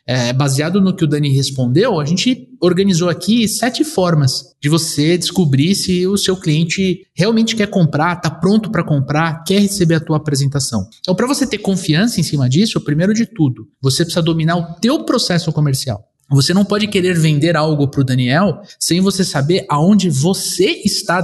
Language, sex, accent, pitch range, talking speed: Portuguese, male, Brazilian, 140-185 Hz, 180 wpm